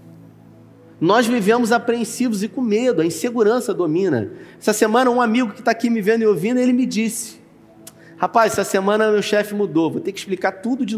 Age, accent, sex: 30-49, Brazilian, male